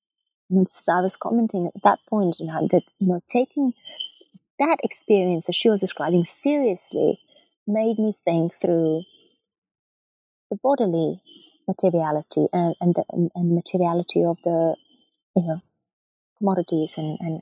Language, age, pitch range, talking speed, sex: English, 30-49, 175-225 Hz, 135 wpm, female